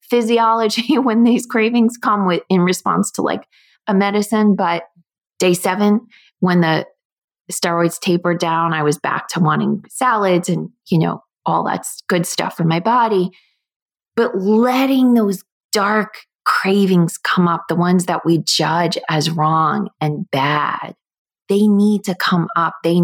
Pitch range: 165-210 Hz